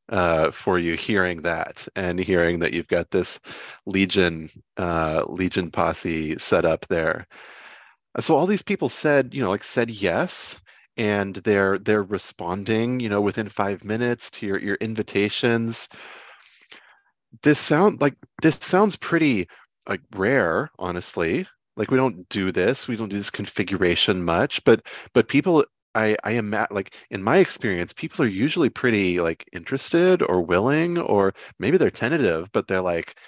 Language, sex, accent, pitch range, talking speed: English, male, American, 95-130 Hz, 155 wpm